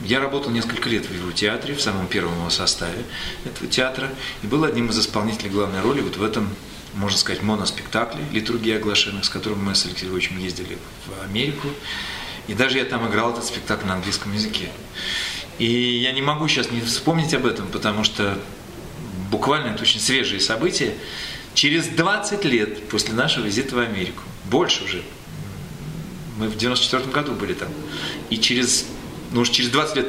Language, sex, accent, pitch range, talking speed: Russian, male, native, 100-130 Hz, 170 wpm